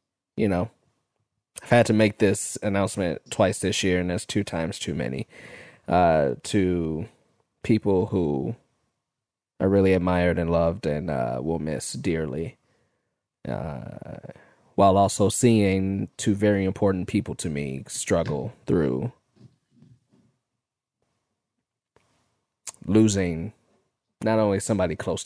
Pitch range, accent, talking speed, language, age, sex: 90-115 Hz, American, 115 wpm, English, 20-39, male